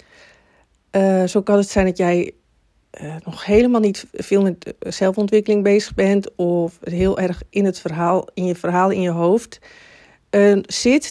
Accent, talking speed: Dutch, 160 wpm